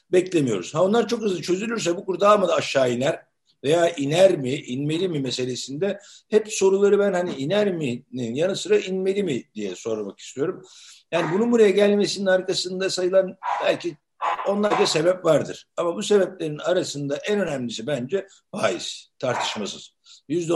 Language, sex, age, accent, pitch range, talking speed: Turkish, male, 60-79, native, 140-190 Hz, 150 wpm